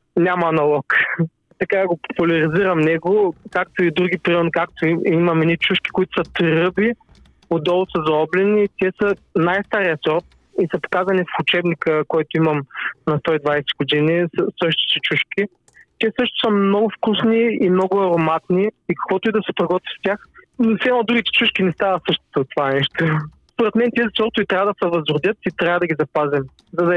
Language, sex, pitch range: Bulgarian, male, 165-205 Hz